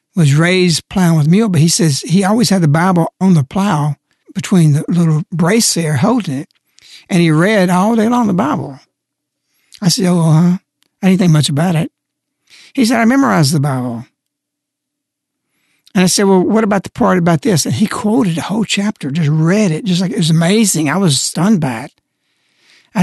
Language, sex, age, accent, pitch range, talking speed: English, male, 60-79, American, 160-210 Hz, 200 wpm